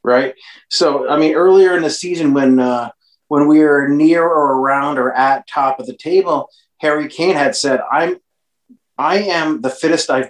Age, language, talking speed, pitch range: 30-49, English, 185 wpm, 130-180 Hz